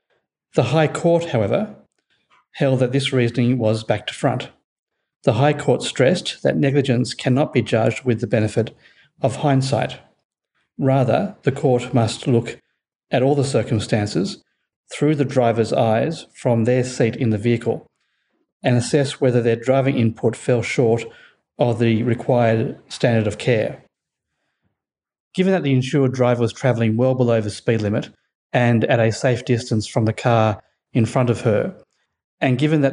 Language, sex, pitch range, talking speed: English, male, 115-135 Hz, 155 wpm